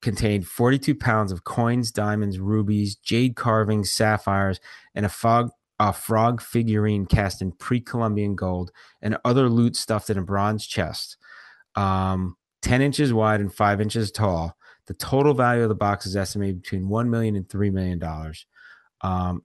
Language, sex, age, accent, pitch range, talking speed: English, male, 30-49, American, 95-115 Hz, 155 wpm